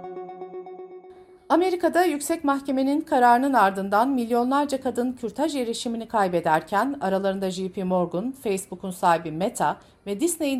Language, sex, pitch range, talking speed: Turkish, female, 180-260 Hz, 100 wpm